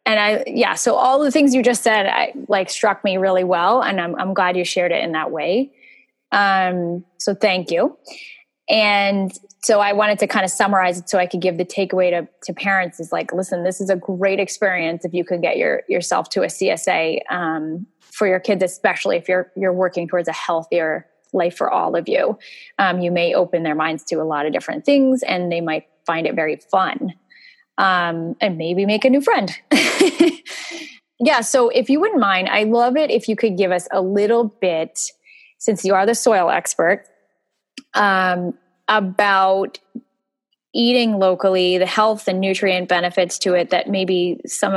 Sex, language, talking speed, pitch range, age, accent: female, English, 195 wpm, 180-240 Hz, 20-39, American